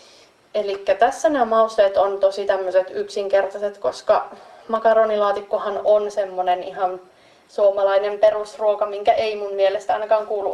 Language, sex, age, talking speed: Finnish, female, 30-49, 120 wpm